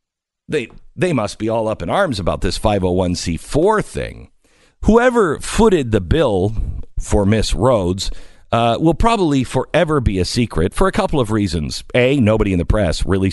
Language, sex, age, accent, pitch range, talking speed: English, male, 50-69, American, 95-145 Hz, 165 wpm